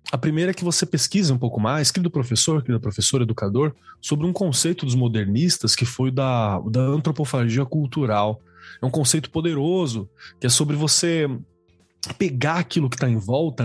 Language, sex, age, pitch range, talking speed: Portuguese, male, 20-39, 120-170 Hz, 170 wpm